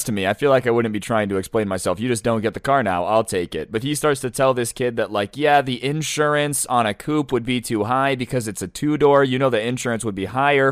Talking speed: 290 wpm